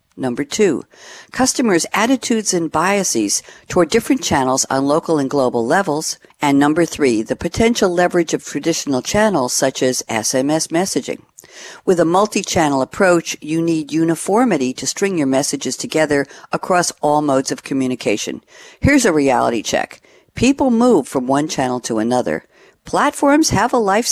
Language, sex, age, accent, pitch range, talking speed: English, female, 60-79, American, 135-195 Hz, 145 wpm